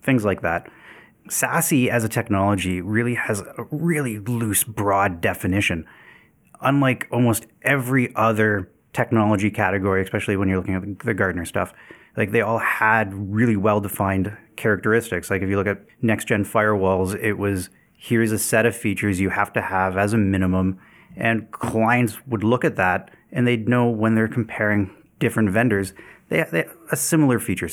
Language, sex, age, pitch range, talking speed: English, male, 30-49, 95-120 Hz, 165 wpm